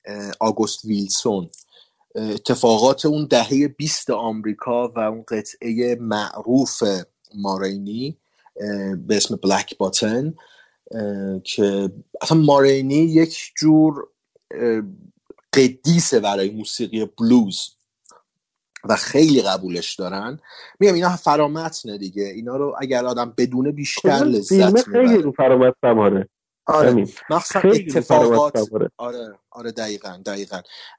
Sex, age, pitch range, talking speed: male, 30-49, 115-150 Hz, 100 wpm